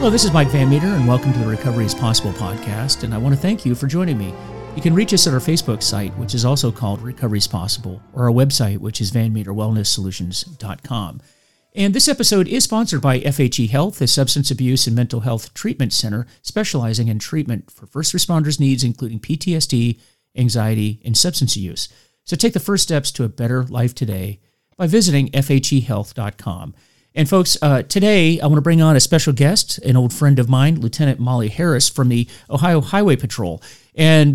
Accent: American